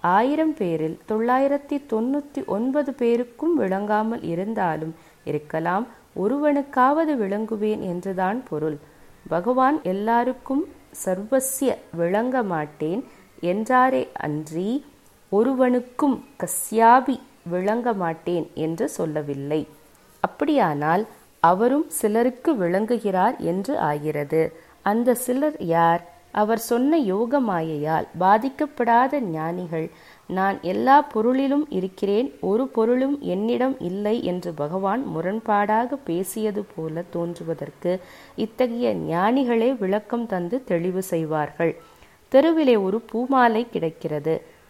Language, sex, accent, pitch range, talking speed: Tamil, female, native, 170-250 Hz, 85 wpm